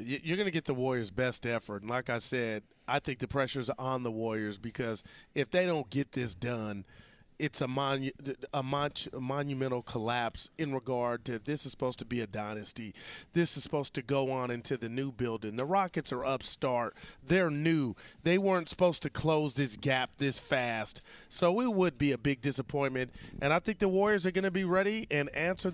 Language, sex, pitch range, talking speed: English, male, 130-175 Hz, 200 wpm